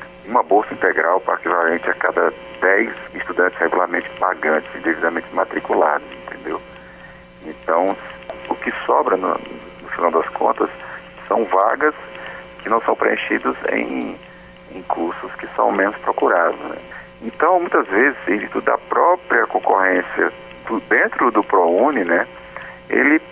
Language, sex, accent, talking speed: Portuguese, male, Brazilian, 125 wpm